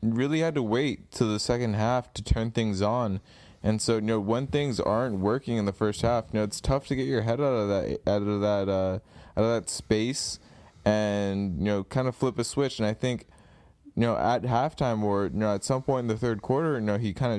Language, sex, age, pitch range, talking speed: English, male, 20-39, 100-125 Hz, 250 wpm